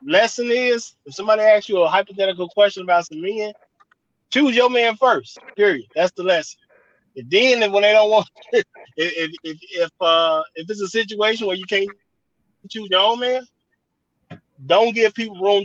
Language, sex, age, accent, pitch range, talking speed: English, male, 30-49, American, 155-205 Hz, 175 wpm